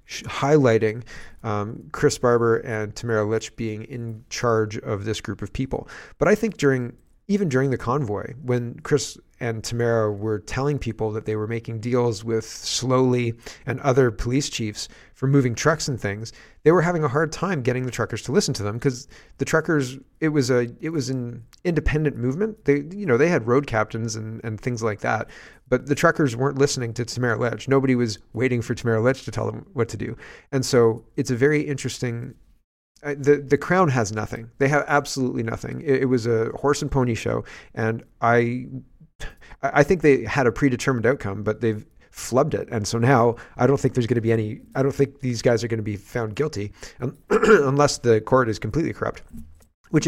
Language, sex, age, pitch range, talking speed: English, male, 30-49, 115-140 Hz, 200 wpm